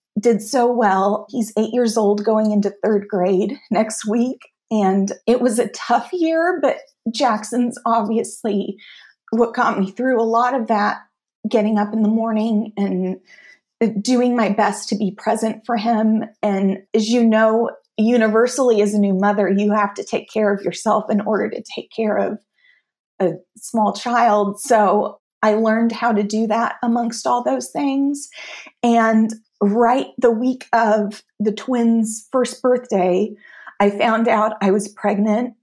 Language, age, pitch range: English, 30-49, 205-235 Hz